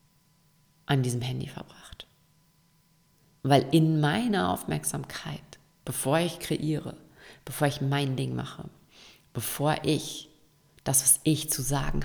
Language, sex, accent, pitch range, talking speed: German, female, German, 130-160 Hz, 115 wpm